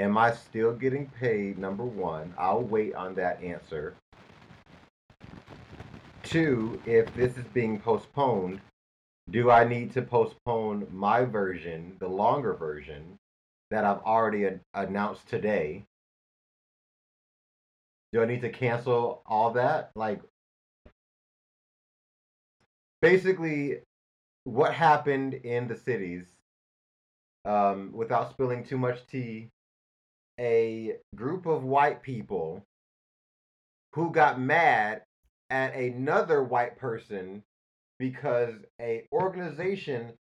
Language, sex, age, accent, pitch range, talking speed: English, male, 30-49, American, 95-130 Hz, 105 wpm